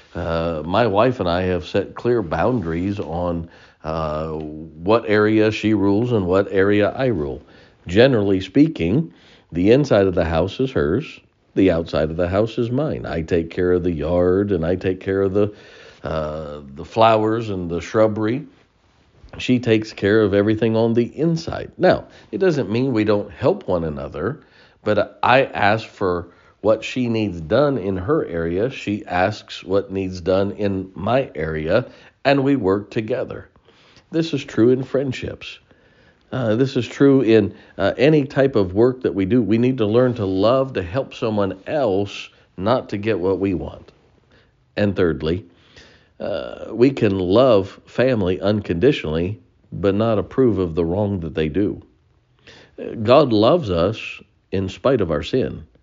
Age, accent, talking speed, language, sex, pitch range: 50-69, American, 165 wpm, English, male, 90-120 Hz